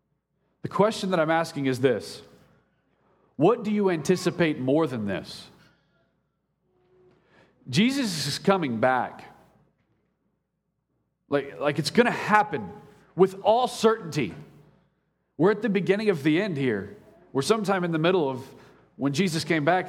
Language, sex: English, male